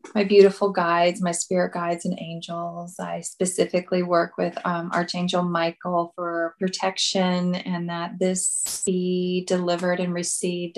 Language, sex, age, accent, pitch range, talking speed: English, female, 20-39, American, 175-190 Hz, 135 wpm